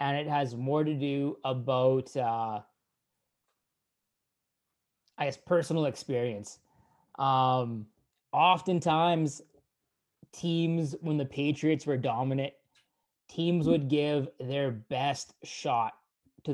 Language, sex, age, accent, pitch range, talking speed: English, male, 20-39, American, 125-150 Hz, 100 wpm